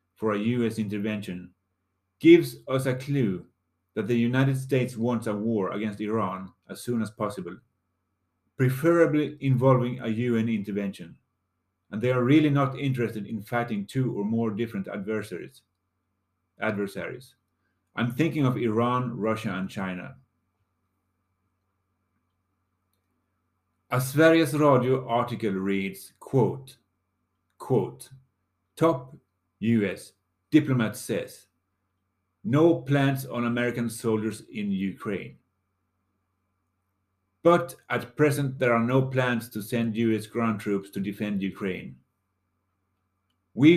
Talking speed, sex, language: 110 wpm, male, English